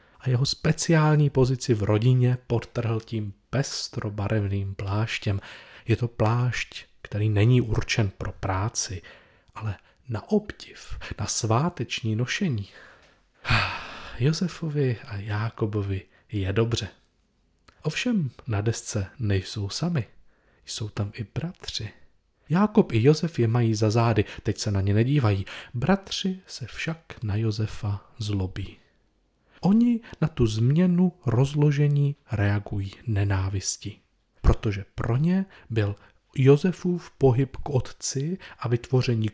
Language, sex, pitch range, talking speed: Czech, male, 105-145 Hz, 110 wpm